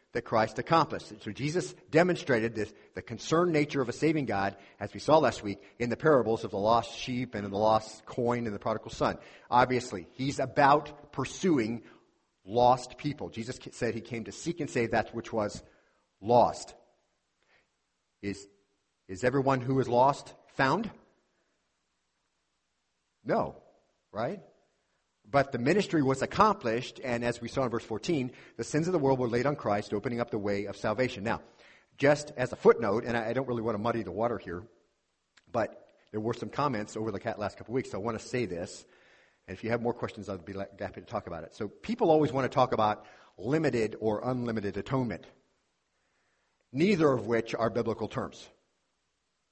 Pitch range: 105-135 Hz